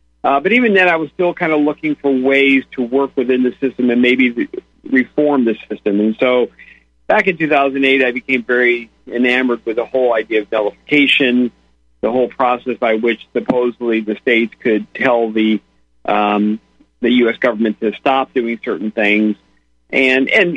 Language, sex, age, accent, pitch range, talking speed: English, male, 50-69, American, 105-130 Hz, 175 wpm